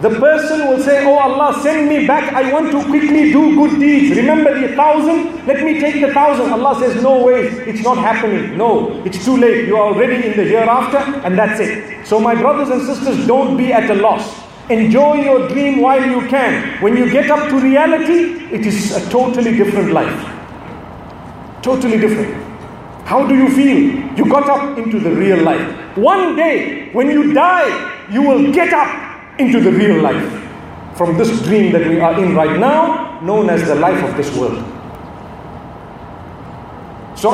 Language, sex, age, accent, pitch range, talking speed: English, male, 40-59, South African, 220-280 Hz, 185 wpm